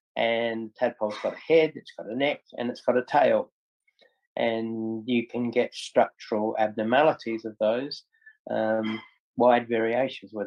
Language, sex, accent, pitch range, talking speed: English, male, Australian, 110-125 Hz, 150 wpm